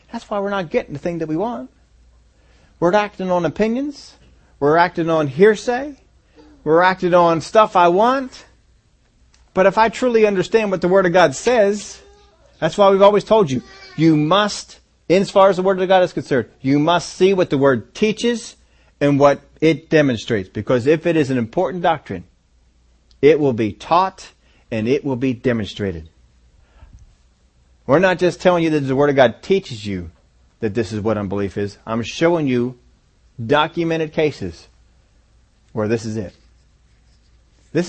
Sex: male